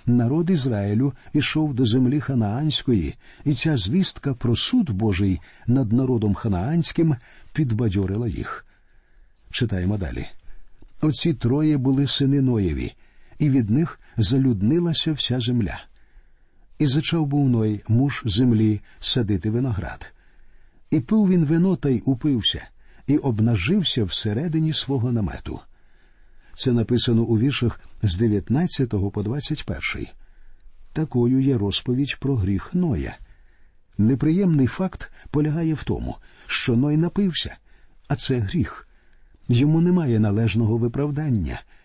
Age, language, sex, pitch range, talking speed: 50-69, Ukrainian, male, 110-150 Hz, 115 wpm